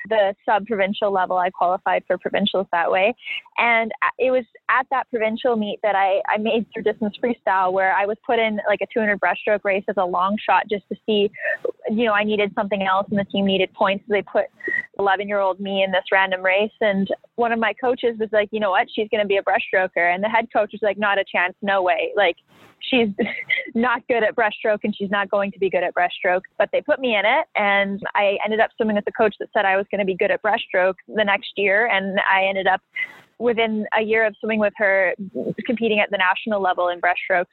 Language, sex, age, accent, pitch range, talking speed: English, female, 20-39, American, 195-230 Hz, 240 wpm